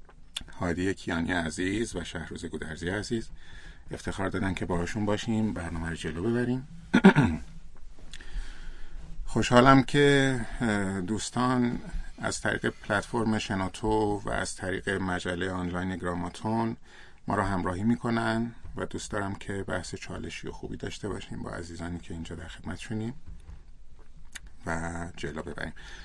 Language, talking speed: Persian, 120 wpm